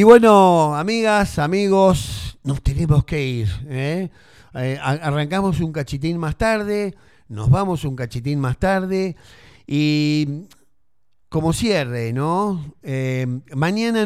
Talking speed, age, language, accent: 110 wpm, 40-59, Spanish, Argentinian